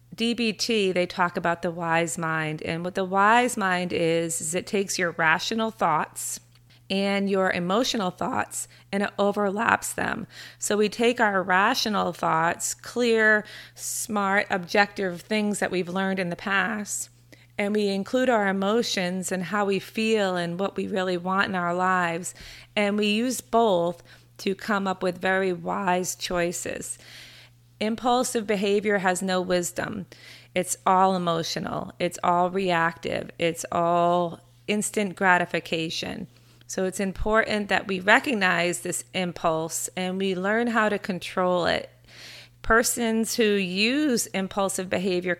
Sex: female